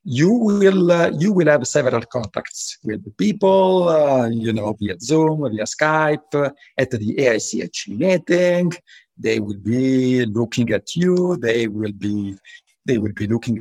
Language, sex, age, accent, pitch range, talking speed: English, male, 50-69, Italian, 115-170 Hz, 155 wpm